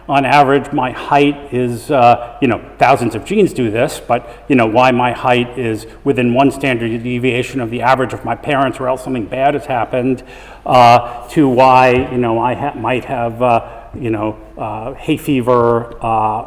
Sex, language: male, English